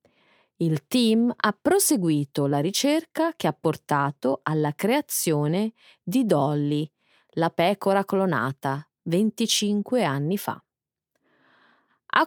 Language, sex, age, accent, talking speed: Italian, female, 30-49, native, 100 wpm